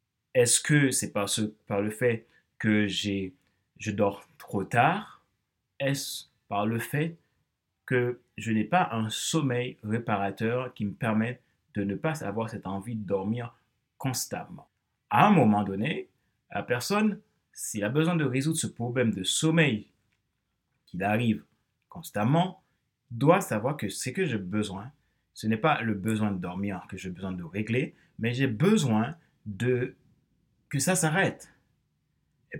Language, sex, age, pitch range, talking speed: French, male, 30-49, 105-140 Hz, 145 wpm